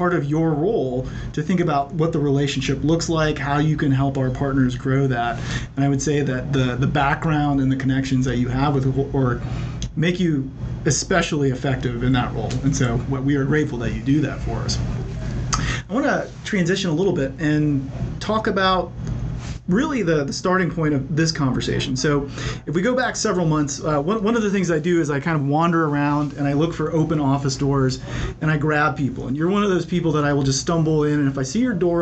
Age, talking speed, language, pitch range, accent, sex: 40-59, 230 wpm, English, 135-170 Hz, American, male